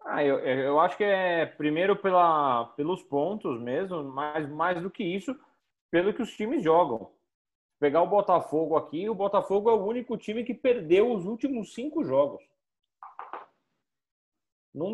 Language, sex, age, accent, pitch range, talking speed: Portuguese, male, 40-59, Brazilian, 165-235 Hz, 150 wpm